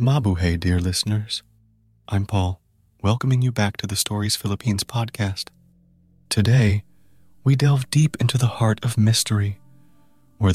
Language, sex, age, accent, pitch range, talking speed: English, male, 30-49, American, 100-125 Hz, 130 wpm